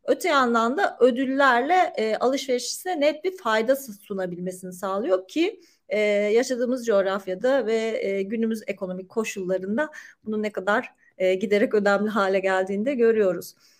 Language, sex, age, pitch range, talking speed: Turkish, female, 40-59, 215-275 Hz, 130 wpm